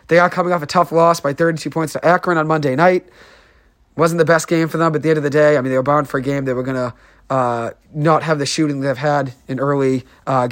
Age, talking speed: 30-49, 280 wpm